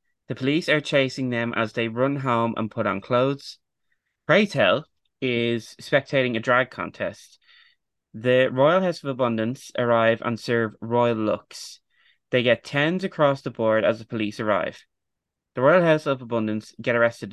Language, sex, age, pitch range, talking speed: English, male, 20-39, 115-140 Hz, 165 wpm